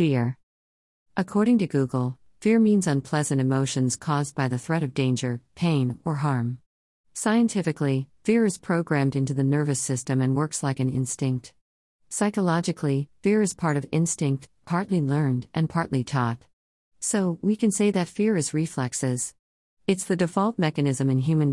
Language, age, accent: English, 50-69, American